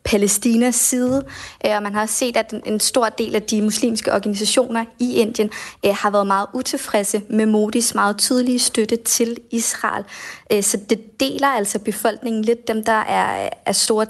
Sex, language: female, Danish